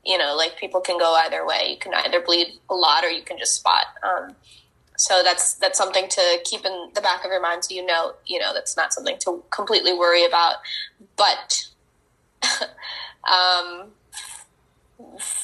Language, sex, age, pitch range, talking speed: English, female, 10-29, 170-200 Hz, 180 wpm